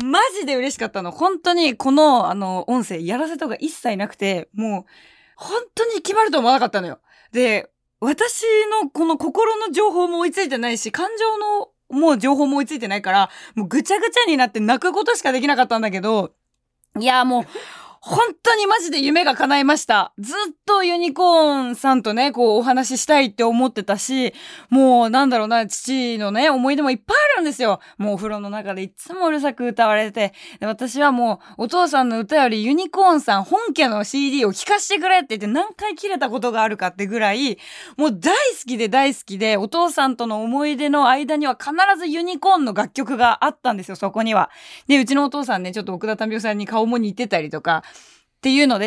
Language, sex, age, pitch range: Japanese, female, 20-39, 215-320 Hz